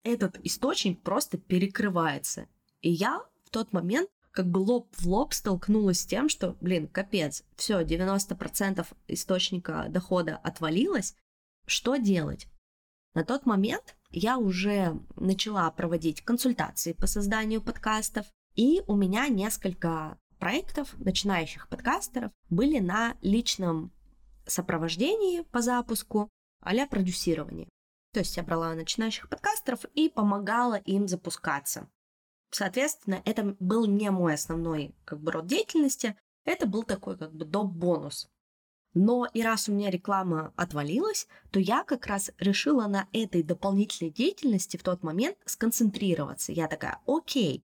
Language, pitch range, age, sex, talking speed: Russian, 175-235 Hz, 20-39, female, 130 wpm